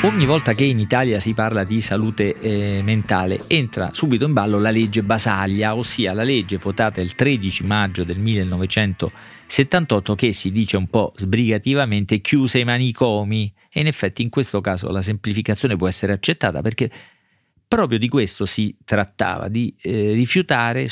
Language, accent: Italian, native